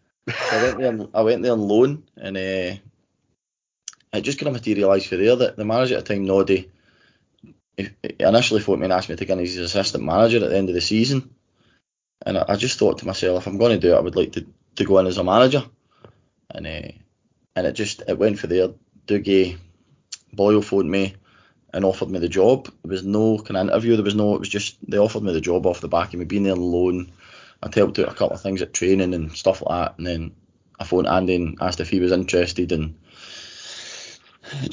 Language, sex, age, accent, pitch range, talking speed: English, male, 20-39, British, 90-110 Hz, 235 wpm